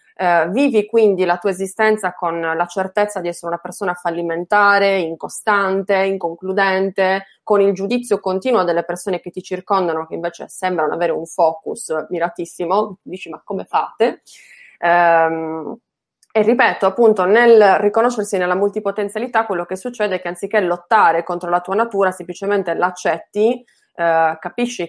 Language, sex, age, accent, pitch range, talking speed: Italian, female, 20-39, native, 175-205 Hz, 135 wpm